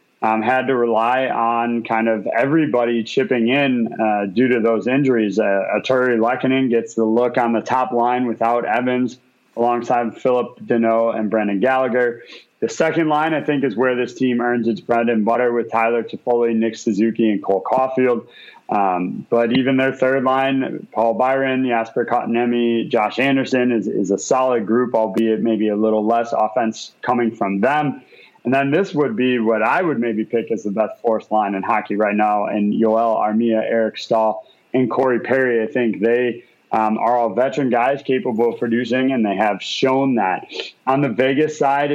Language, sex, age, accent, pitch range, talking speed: English, male, 30-49, American, 115-130 Hz, 185 wpm